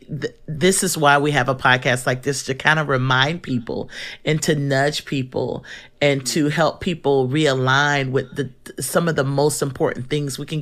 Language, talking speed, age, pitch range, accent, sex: English, 180 wpm, 40-59, 130-155 Hz, American, male